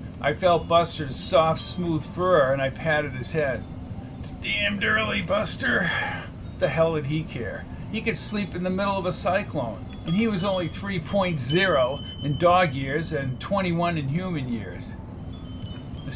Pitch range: 125-170 Hz